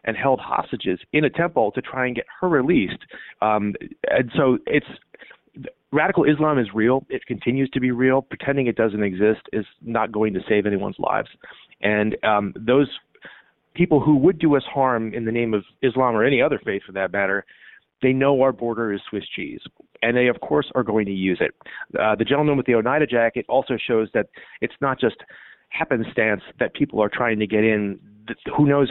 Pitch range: 110-135 Hz